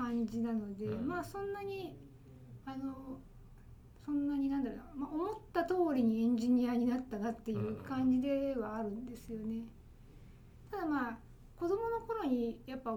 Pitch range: 220-305 Hz